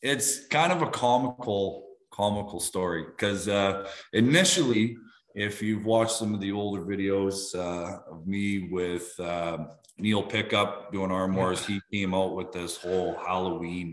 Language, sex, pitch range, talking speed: English, male, 95-115 Hz, 145 wpm